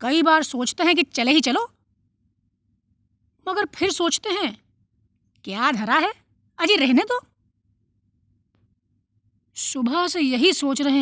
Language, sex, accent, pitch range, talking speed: Hindi, female, native, 230-335 Hz, 125 wpm